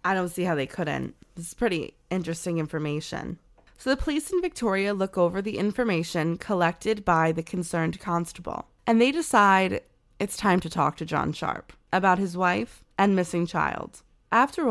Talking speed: 170 wpm